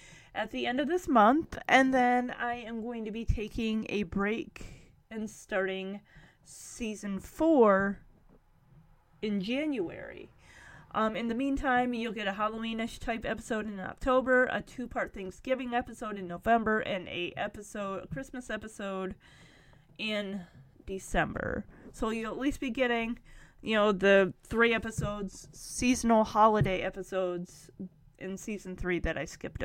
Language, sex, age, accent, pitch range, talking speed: English, female, 30-49, American, 190-245 Hz, 140 wpm